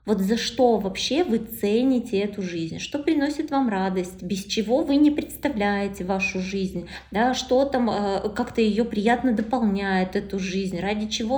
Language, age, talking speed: Russian, 20-39, 165 wpm